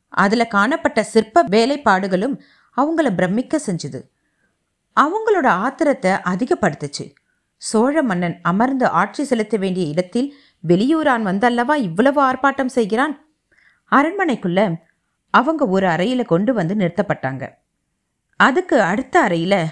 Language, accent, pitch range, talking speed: Tamil, native, 180-275 Hz, 95 wpm